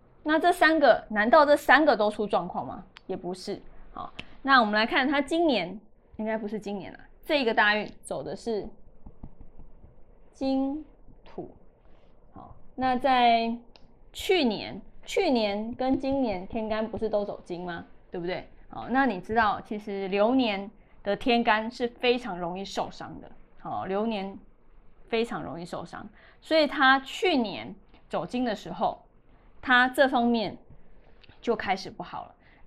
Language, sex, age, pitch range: Chinese, female, 20-39, 200-265 Hz